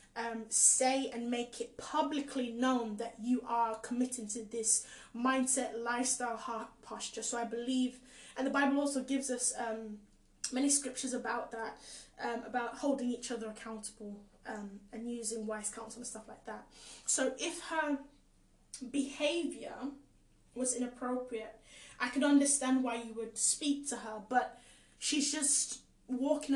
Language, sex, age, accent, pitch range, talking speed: English, female, 10-29, British, 235-305 Hz, 145 wpm